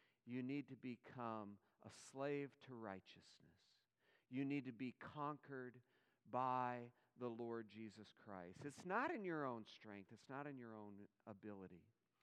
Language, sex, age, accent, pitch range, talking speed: English, male, 50-69, American, 130-200 Hz, 145 wpm